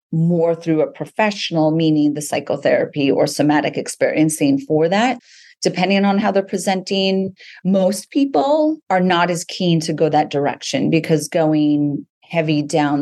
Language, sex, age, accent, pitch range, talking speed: English, female, 30-49, American, 150-185 Hz, 145 wpm